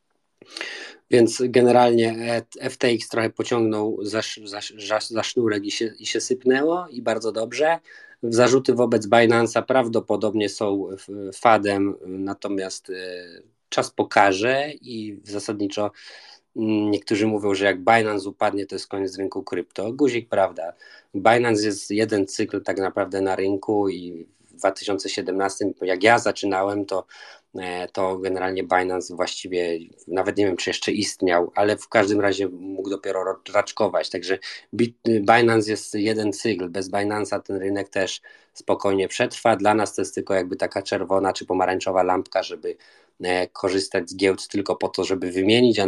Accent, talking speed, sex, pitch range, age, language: native, 135 wpm, male, 95-110 Hz, 20-39, Polish